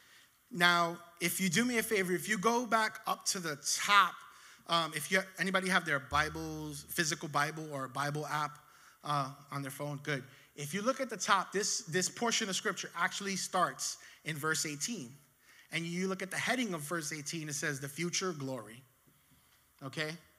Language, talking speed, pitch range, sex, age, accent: English, 185 wpm, 150-210 Hz, male, 30-49, American